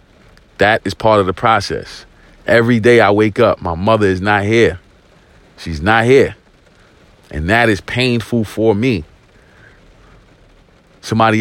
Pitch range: 95-115 Hz